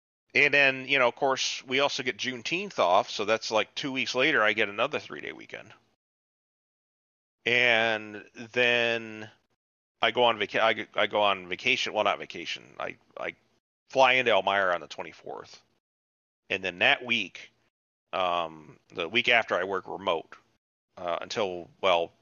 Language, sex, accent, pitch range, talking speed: English, male, American, 95-140 Hz, 155 wpm